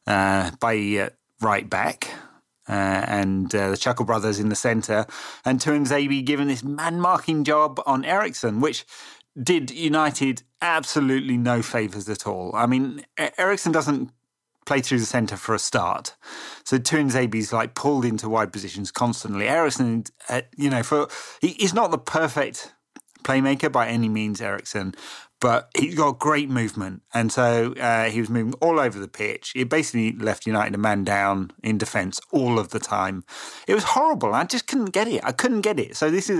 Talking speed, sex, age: 180 wpm, male, 30-49